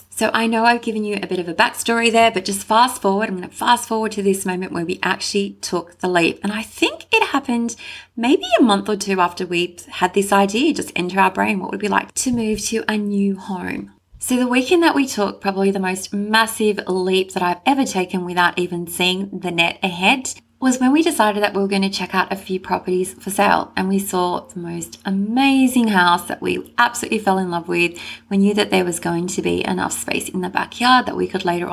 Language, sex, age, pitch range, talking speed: English, female, 20-39, 175-225 Hz, 240 wpm